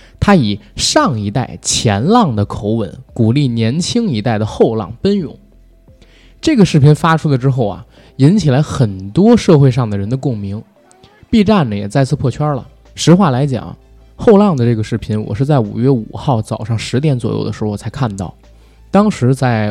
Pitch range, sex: 110-150 Hz, male